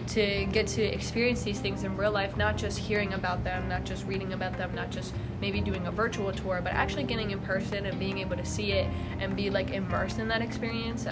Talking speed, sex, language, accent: 235 wpm, female, English, American